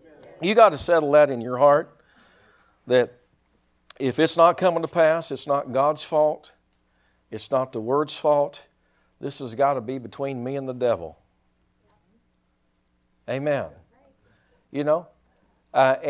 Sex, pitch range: male, 115-165 Hz